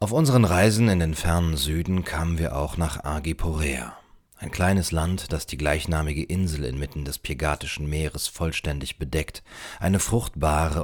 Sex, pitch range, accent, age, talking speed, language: male, 75-90 Hz, German, 40-59, 150 wpm, German